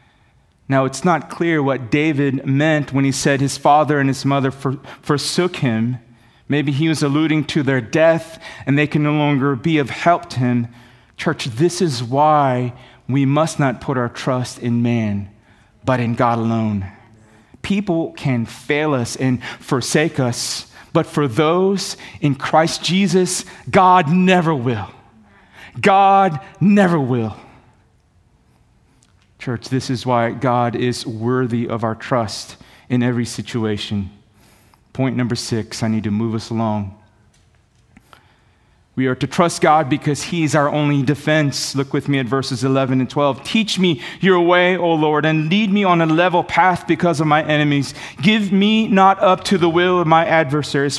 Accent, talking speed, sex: American, 160 wpm, male